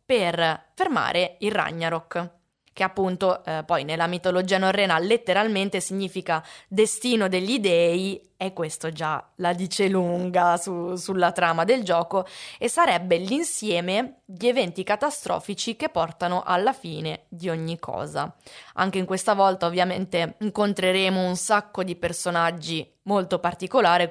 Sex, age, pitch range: female, 20-39, 170-225 Hz